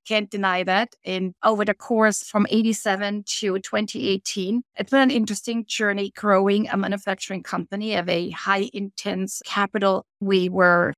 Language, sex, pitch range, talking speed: English, female, 190-215 Hz, 150 wpm